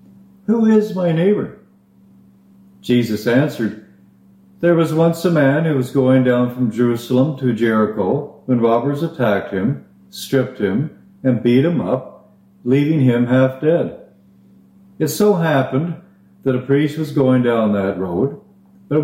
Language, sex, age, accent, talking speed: English, male, 50-69, American, 140 wpm